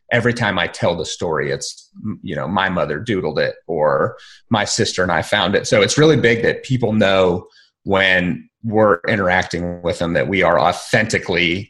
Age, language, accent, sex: 30-49, English, American, male